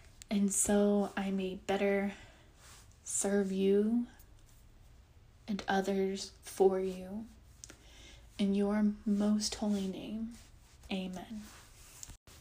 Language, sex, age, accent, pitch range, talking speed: English, female, 20-39, American, 200-220 Hz, 80 wpm